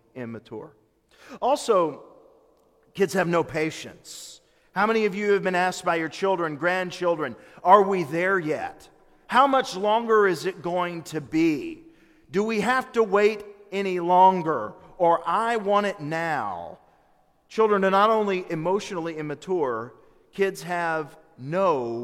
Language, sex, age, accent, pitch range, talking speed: English, male, 40-59, American, 160-220 Hz, 135 wpm